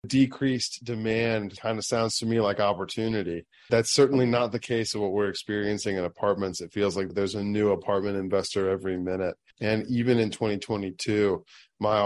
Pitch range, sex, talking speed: 100-115 Hz, male, 175 wpm